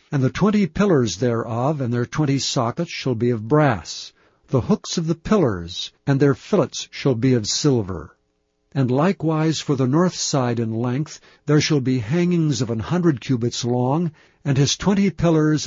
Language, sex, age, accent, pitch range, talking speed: English, male, 60-79, American, 125-155 Hz, 175 wpm